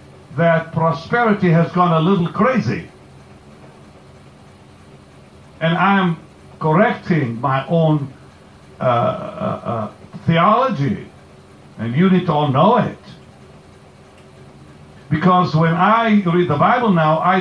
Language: English